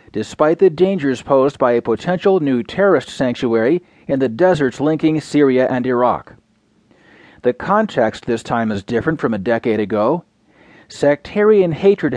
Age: 40-59